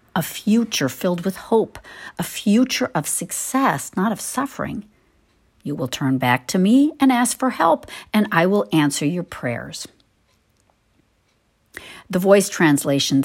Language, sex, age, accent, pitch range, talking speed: English, female, 60-79, American, 145-220 Hz, 140 wpm